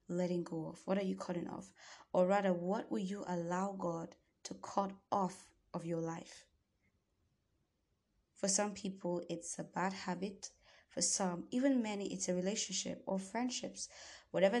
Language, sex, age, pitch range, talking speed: English, female, 20-39, 170-195 Hz, 155 wpm